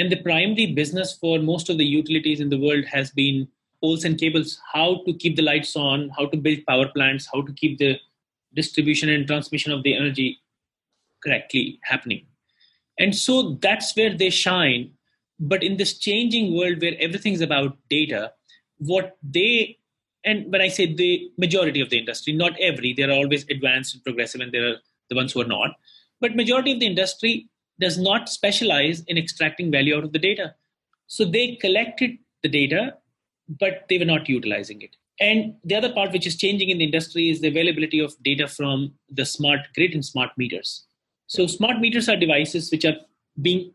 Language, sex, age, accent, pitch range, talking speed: English, male, 30-49, Indian, 145-185 Hz, 190 wpm